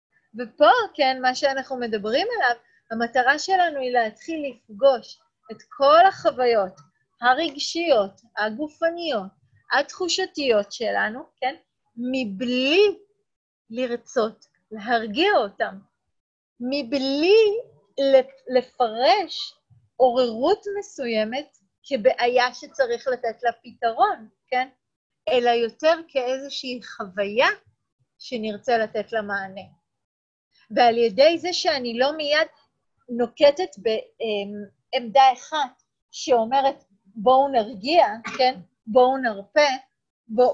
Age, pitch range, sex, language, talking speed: 30-49, 225-290 Hz, female, Hebrew, 85 wpm